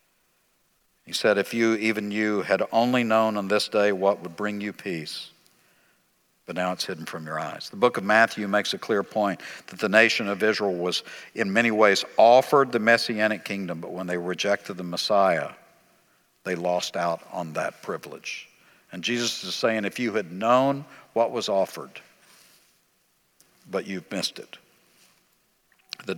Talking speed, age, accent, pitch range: 165 wpm, 60-79, American, 100-115 Hz